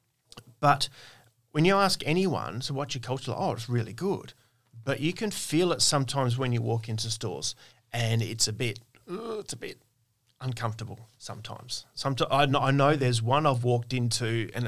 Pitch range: 115-135 Hz